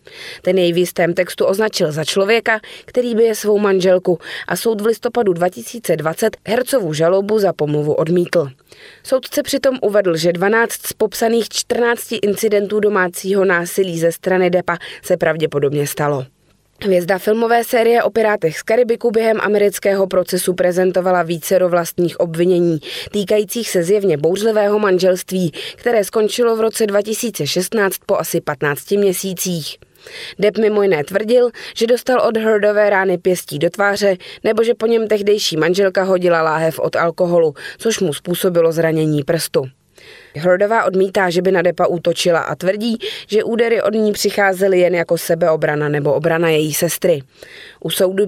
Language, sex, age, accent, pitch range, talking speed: Czech, female, 20-39, native, 170-220 Hz, 145 wpm